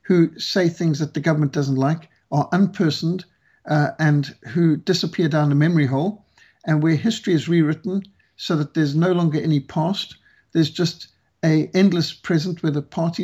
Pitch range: 150-185 Hz